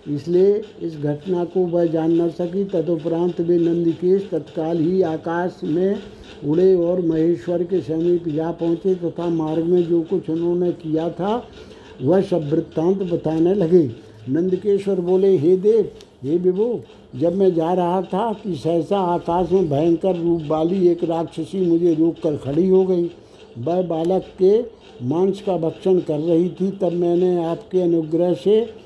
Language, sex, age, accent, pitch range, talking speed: Hindi, male, 60-79, native, 165-185 Hz, 160 wpm